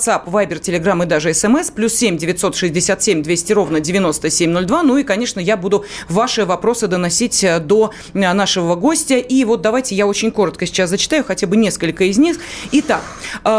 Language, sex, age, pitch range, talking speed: Russian, female, 30-49, 195-240 Hz, 160 wpm